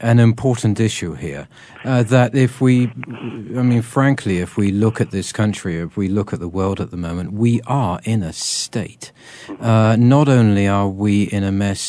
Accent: British